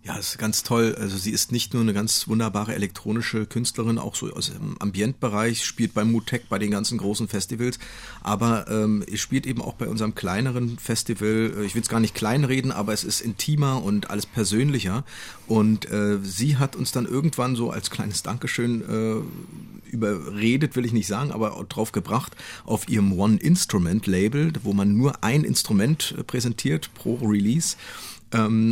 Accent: German